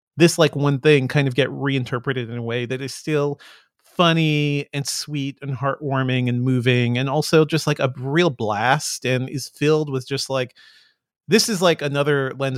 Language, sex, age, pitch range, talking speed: English, male, 30-49, 125-150 Hz, 185 wpm